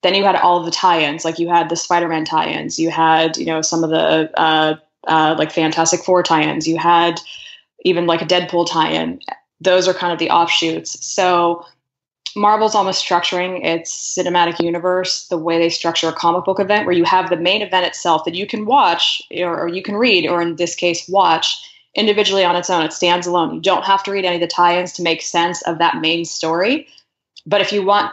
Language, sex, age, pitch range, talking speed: English, female, 20-39, 165-185 Hz, 215 wpm